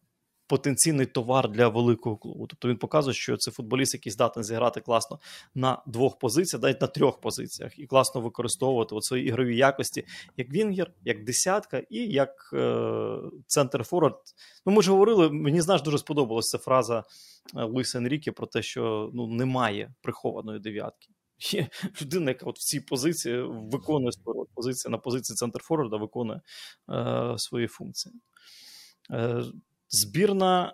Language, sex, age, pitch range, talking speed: Ukrainian, male, 20-39, 120-155 Hz, 145 wpm